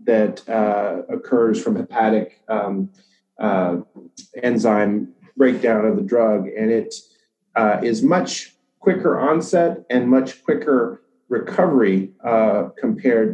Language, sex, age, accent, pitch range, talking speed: English, male, 30-49, American, 110-130 Hz, 115 wpm